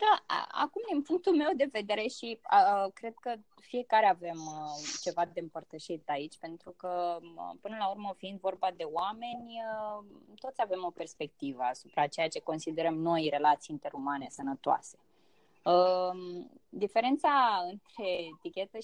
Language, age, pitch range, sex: Romanian, 20-39, 165-220 Hz, female